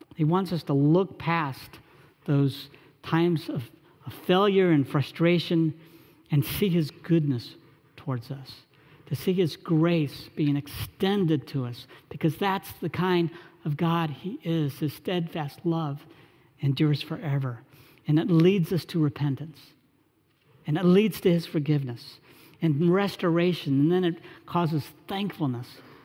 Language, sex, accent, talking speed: English, male, American, 135 wpm